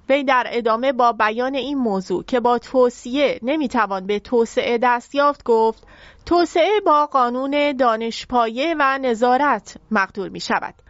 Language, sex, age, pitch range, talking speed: English, female, 30-49, 225-285 Hz, 140 wpm